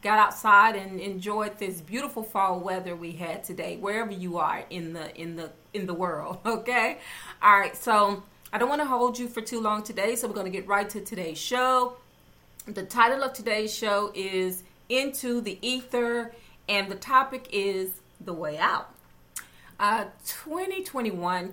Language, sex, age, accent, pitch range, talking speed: English, female, 40-59, American, 175-220 Hz, 175 wpm